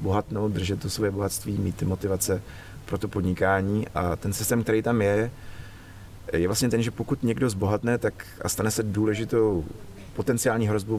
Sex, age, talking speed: male, 30-49, 160 wpm